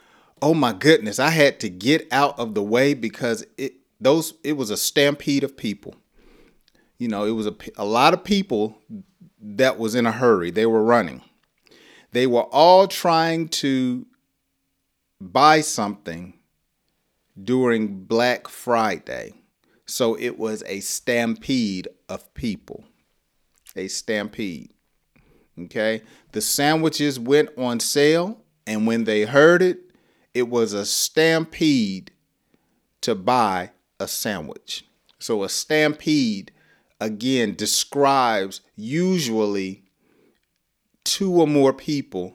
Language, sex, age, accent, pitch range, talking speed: English, male, 40-59, American, 110-160 Hz, 120 wpm